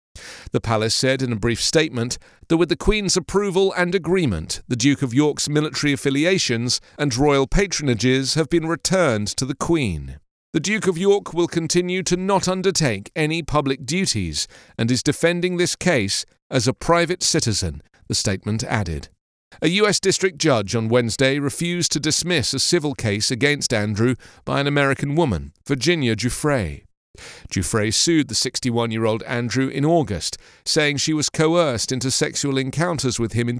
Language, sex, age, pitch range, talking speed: English, male, 40-59, 115-165 Hz, 160 wpm